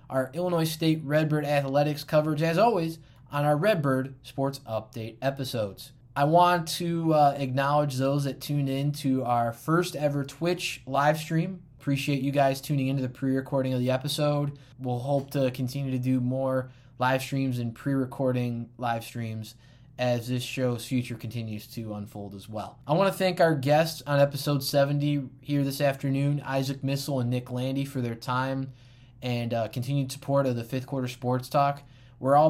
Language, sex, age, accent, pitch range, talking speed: English, male, 20-39, American, 125-145 Hz, 170 wpm